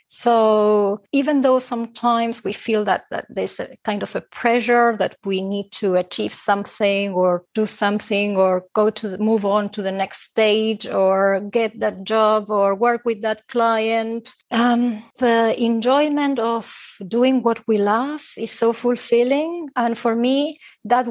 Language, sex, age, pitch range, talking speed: English, female, 30-49, 205-240 Hz, 160 wpm